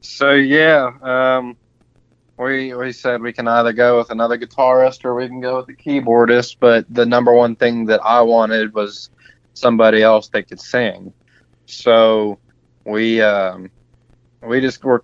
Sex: male